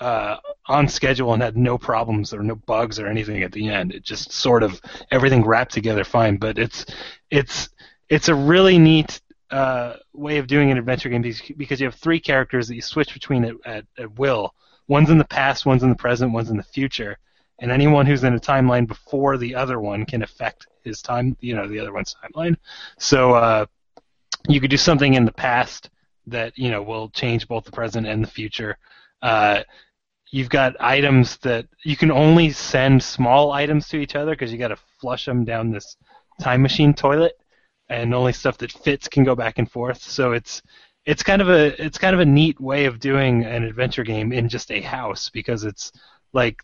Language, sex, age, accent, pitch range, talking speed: English, male, 30-49, American, 115-140 Hz, 205 wpm